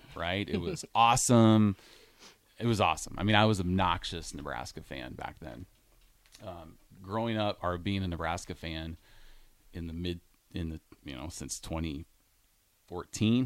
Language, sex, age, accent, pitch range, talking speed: English, male, 30-49, American, 85-110 Hz, 145 wpm